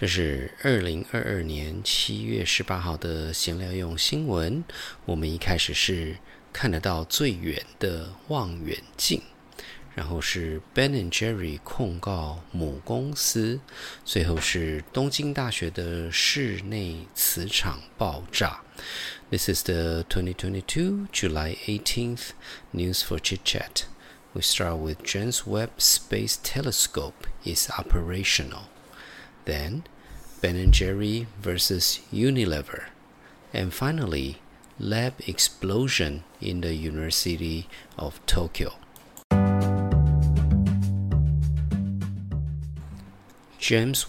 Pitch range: 80-110 Hz